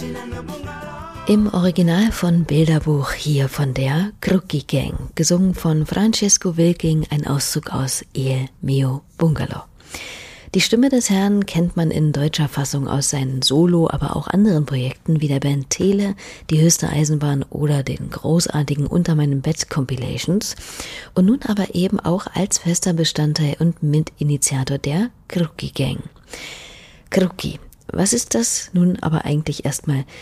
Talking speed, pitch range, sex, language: 135 wpm, 150-190 Hz, female, German